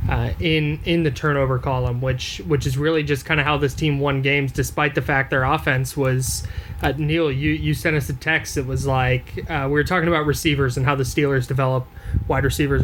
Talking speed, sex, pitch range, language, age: 225 wpm, male, 130-160 Hz, English, 20-39